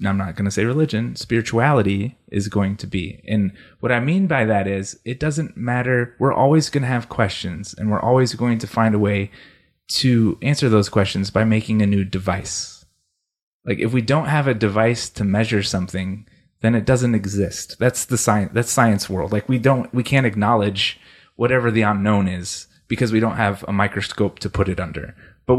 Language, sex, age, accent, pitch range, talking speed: English, male, 30-49, American, 100-120 Hz, 200 wpm